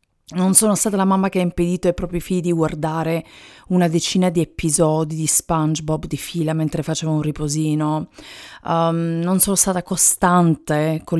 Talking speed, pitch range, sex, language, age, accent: 165 wpm, 150-180 Hz, female, Italian, 30-49, native